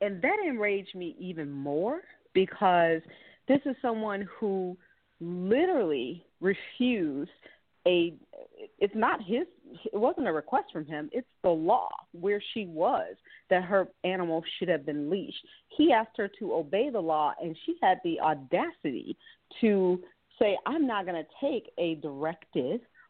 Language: English